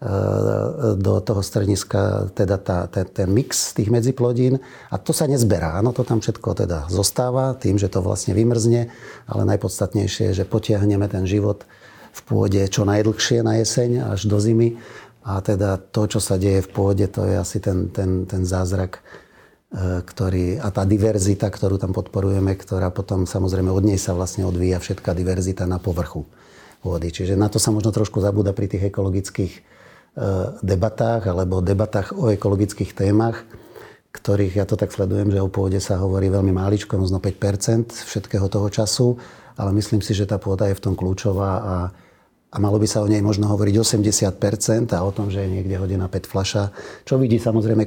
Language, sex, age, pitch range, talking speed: Slovak, male, 40-59, 95-110 Hz, 180 wpm